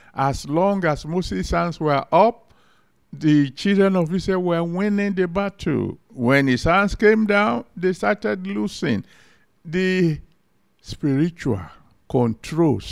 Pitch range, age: 145-225 Hz, 60-79